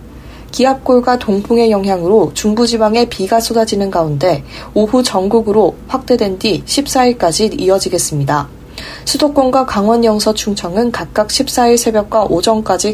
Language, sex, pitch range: Korean, female, 175-235 Hz